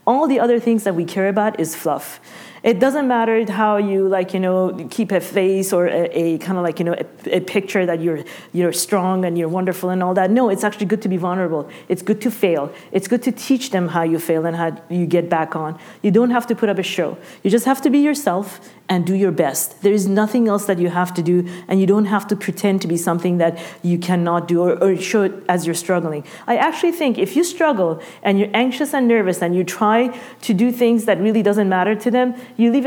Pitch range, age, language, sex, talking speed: 180-225 Hz, 40-59, English, female, 250 wpm